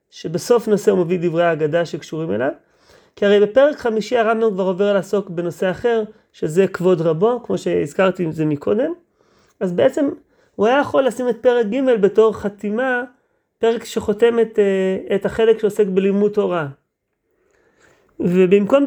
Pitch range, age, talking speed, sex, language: 180-240 Hz, 30-49, 145 wpm, male, Hebrew